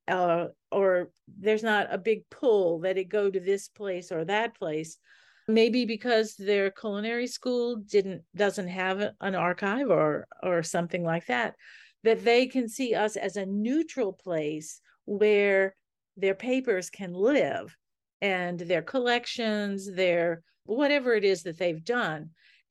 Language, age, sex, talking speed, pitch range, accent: English, 50-69, female, 145 wpm, 180-225 Hz, American